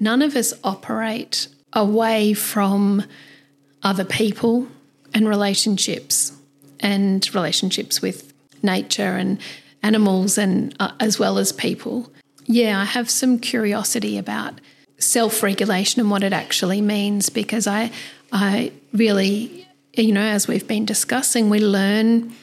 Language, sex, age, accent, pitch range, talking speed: English, female, 40-59, Australian, 205-235 Hz, 125 wpm